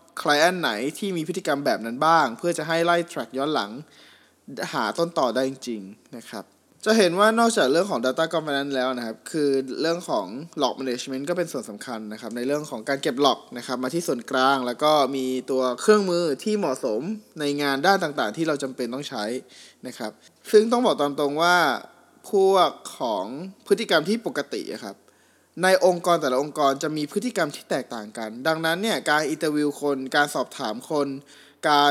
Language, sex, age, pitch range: Thai, male, 20-39, 135-175 Hz